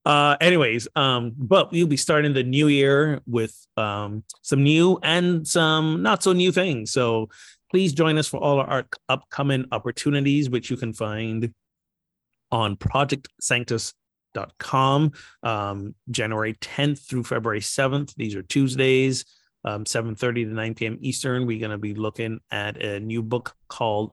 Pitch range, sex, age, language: 110-135 Hz, male, 30-49, English